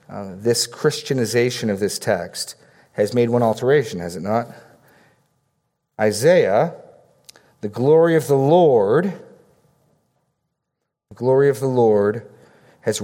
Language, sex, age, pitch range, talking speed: English, male, 40-59, 120-140 Hz, 115 wpm